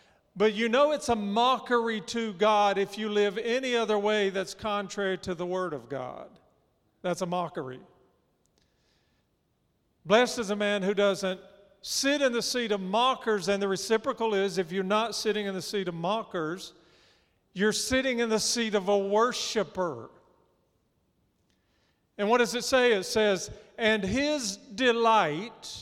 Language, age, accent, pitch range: English, 50-69, American, 190-225 Hz